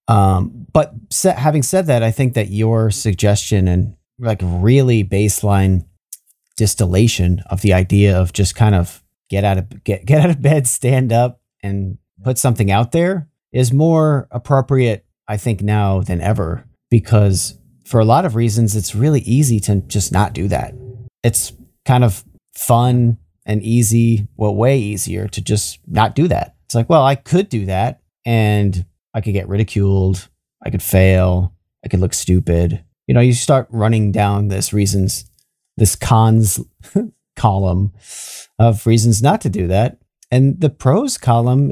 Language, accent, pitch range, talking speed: English, American, 100-120 Hz, 165 wpm